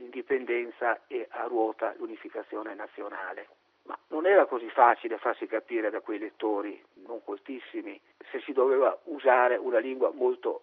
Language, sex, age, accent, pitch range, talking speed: Italian, male, 50-69, native, 250-420 Hz, 140 wpm